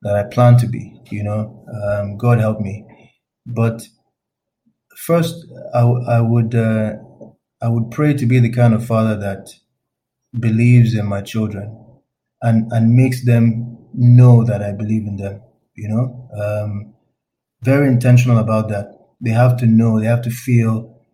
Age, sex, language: 20-39, male, English